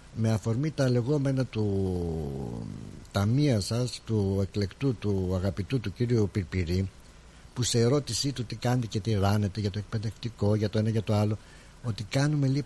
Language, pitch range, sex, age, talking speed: Greek, 105-135 Hz, male, 60-79, 165 wpm